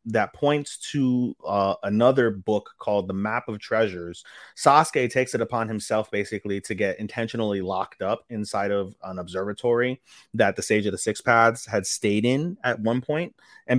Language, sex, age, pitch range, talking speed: English, male, 30-49, 100-120 Hz, 175 wpm